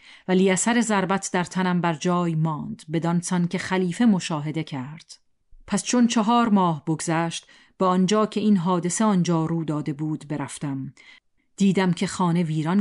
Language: Persian